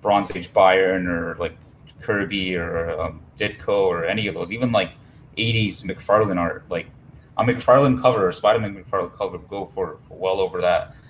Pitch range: 95-130 Hz